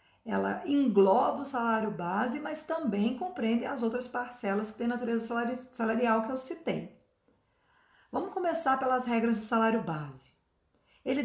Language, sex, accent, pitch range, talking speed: Portuguese, female, Brazilian, 210-265 Hz, 140 wpm